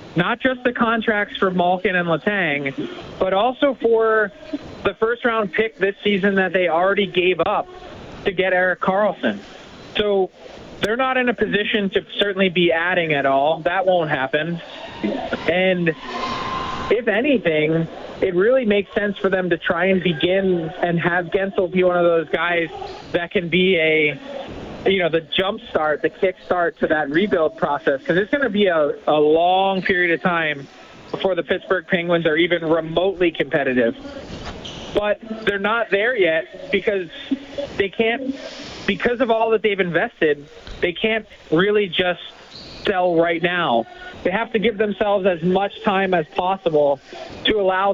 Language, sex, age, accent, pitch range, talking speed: English, male, 20-39, American, 175-220 Hz, 160 wpm